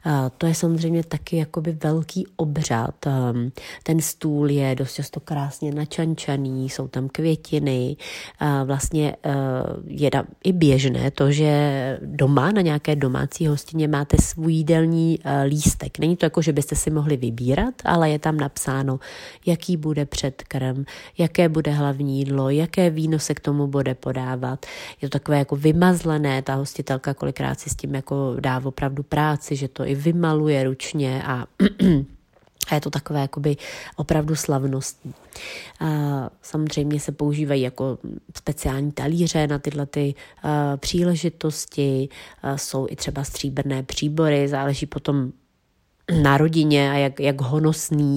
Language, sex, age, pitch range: Czech, female, 30-49, 135-155 Hz